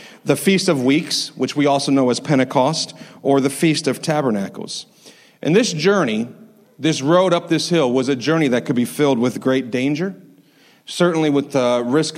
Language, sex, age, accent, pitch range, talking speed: English, male, 40-59, American, 130-155 Hz, 180 wpm